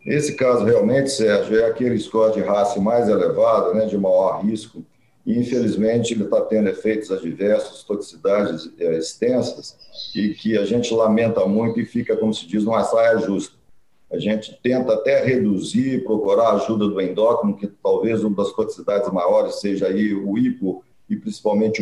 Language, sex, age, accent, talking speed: English, male, 40-59, Brazilian, 160 wpm